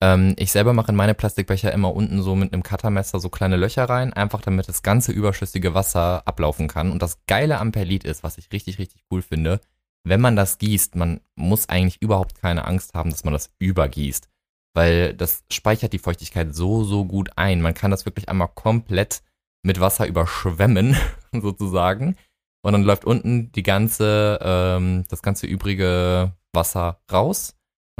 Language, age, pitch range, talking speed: German, 20-39, 85-105 Hz, 175 wpm